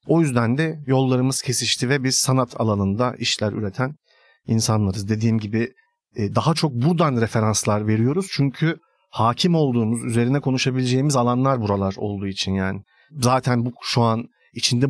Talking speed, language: 135 wpm, Turkish